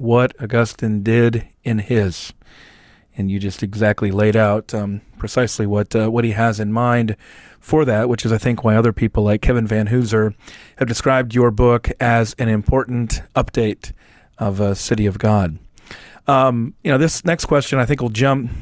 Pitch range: 110-145 Hz